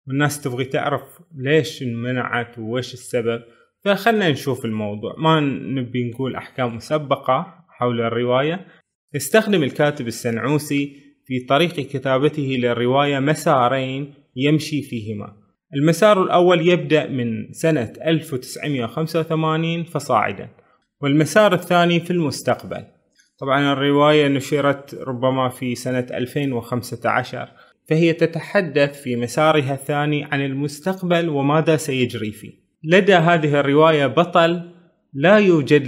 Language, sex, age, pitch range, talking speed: Arabic, male, 20-39, 130-160 Hz, 100 wpm